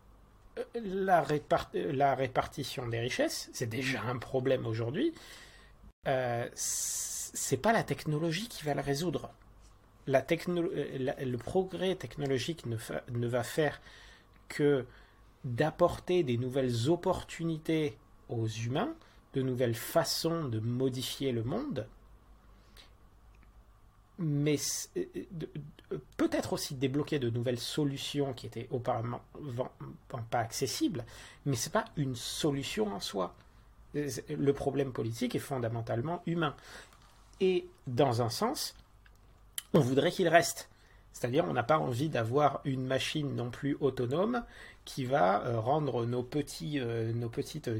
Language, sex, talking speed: French, male, 125 wpm